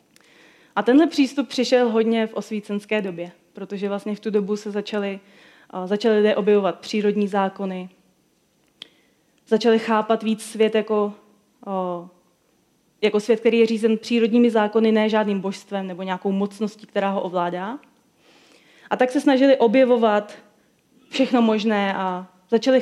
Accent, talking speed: native, 125 wpm